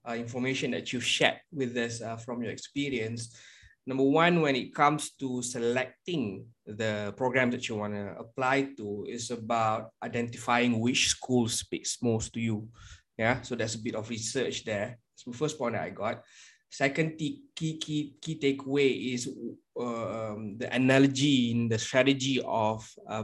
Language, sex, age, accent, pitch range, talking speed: English, male, 20-39, Malaysian, 115-140 Hz, 165 wpm